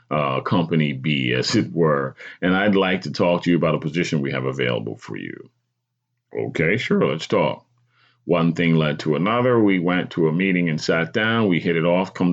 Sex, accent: male, American